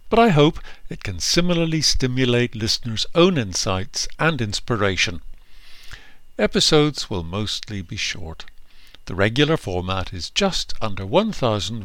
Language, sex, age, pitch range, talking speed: English, male, 60-79, 95-160 Hz, 120 wpm